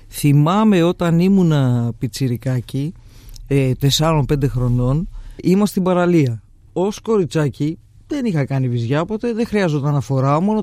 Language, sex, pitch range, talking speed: Greek, male, 140-205 Hz, 120 wpm